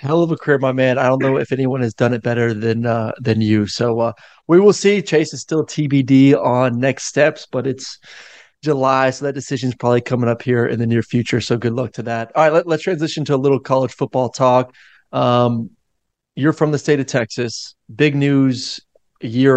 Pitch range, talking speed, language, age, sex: 125-150 Hz, 225 wpm, English, 30-49, male